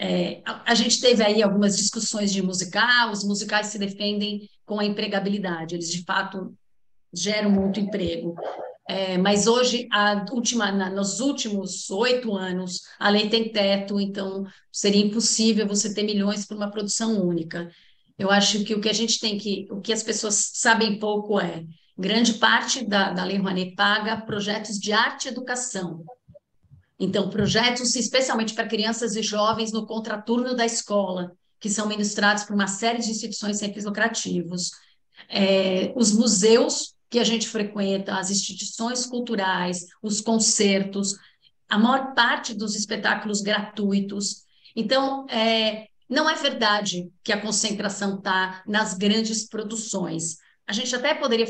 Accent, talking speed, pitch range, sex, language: Brazilian, 150 wpm, 200-225 Hz, female, Portuguese